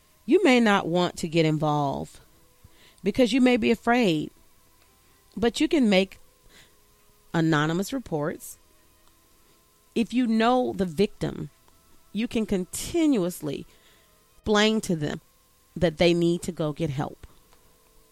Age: 40-59